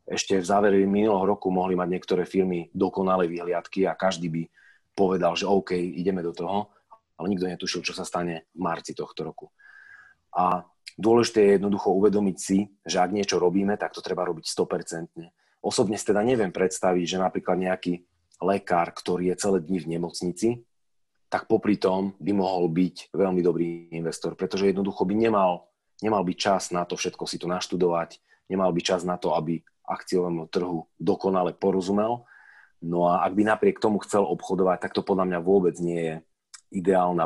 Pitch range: 85-100 Hz